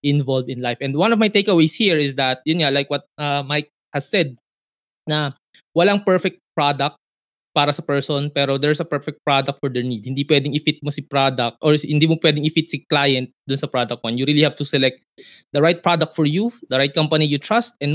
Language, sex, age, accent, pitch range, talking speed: Filipino, male, 20-39, native, 135-160 Hz, 225 wpm